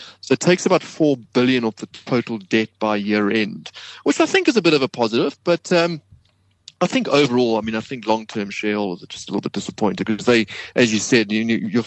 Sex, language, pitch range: male, English, 105-130 Hz